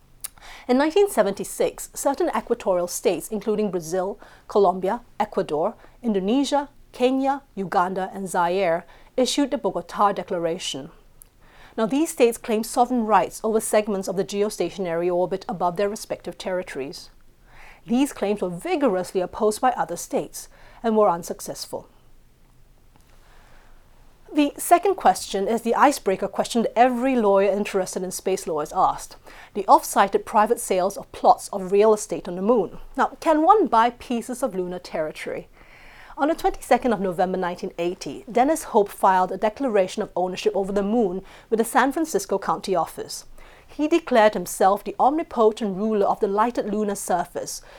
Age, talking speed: 30-49, 145 wpm